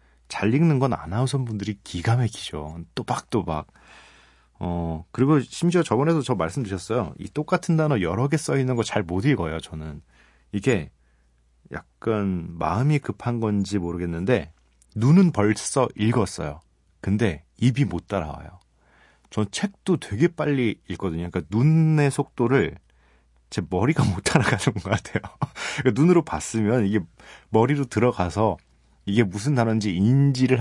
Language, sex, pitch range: Korean, male, 85-130 Hz